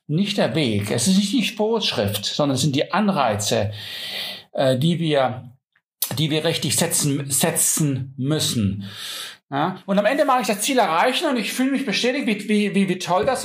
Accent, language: German, German